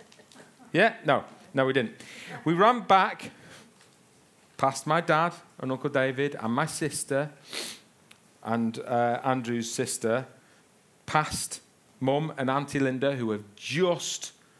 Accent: British